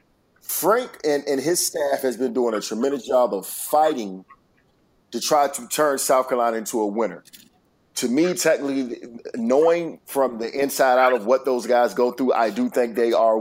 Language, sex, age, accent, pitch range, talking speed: English, male, 40-59, American, 125-165 Hz, 185 wpm